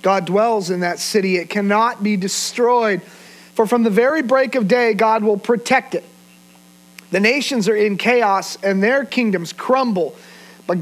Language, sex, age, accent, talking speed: English, male, 40-59, American, 165 wpm